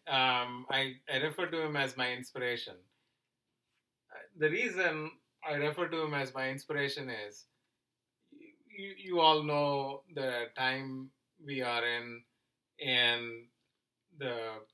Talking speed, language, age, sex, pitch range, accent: 125 wpm, English, 30-49, male, 115-140 Hz, Indian